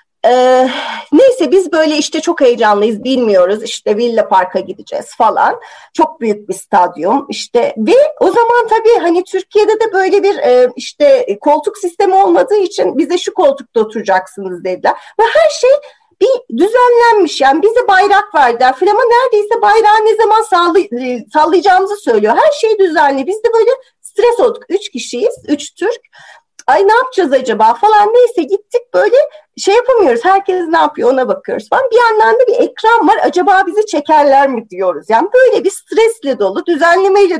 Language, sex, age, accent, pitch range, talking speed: Turkish, female, 40-59, native, 260-440 Hz, 160 wpm